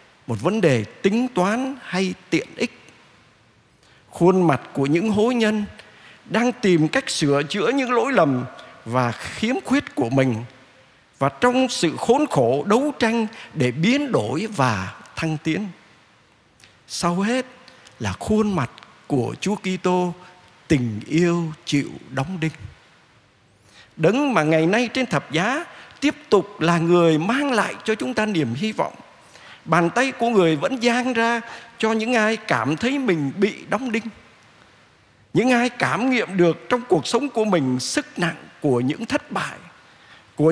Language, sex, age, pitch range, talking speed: Vietnamese, male, 50-69, 145-230 Hz, 155 wpm